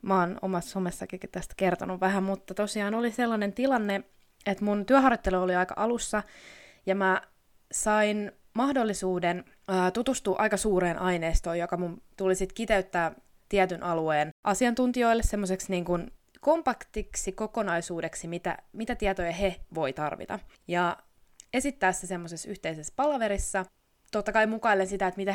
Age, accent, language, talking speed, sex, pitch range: 20-39, native, Finnish, 130 wpm, female, 180-230 Hz